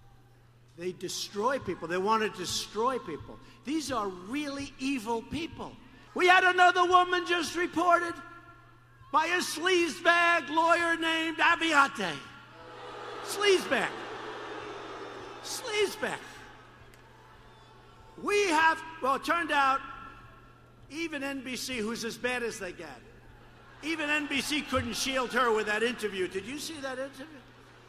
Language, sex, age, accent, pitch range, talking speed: English, male, 60-79, American, 200-325 Hz, 115 wpm